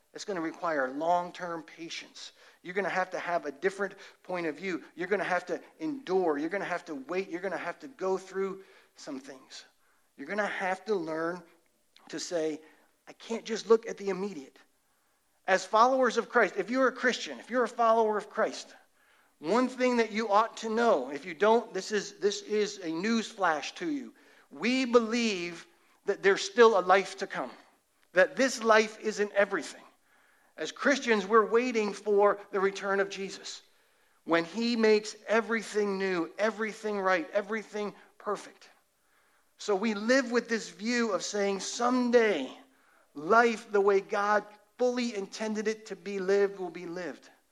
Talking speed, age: 175 wpm, 40-59